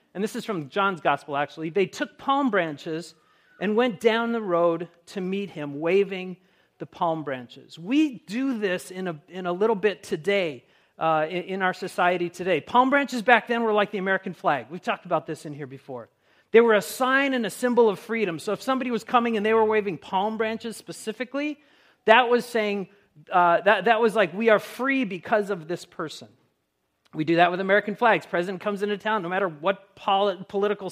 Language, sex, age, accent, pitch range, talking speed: English, male, 40-59, American, 175-225 Hz, 210 wpm